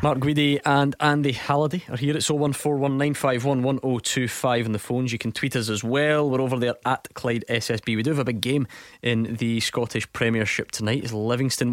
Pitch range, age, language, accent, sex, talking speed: 110-140 Hz, 20-39, English, British, male, 190 wpm